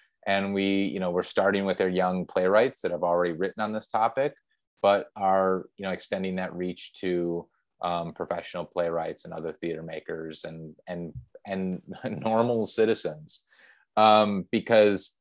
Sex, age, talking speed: male, 30-49, 155 wpm